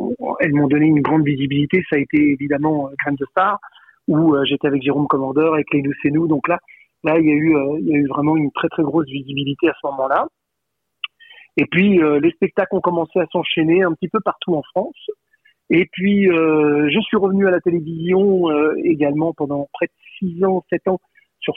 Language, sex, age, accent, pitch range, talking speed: French, male, 40-59, French, 145-185 Hz, 220 wpm